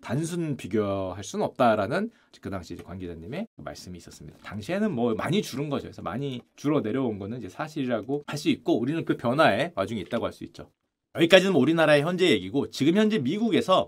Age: 30-49